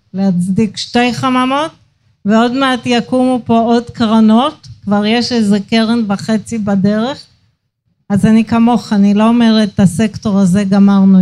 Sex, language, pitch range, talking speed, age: female, Hebrew, 195-235 Hz, 135 wpm, 50-69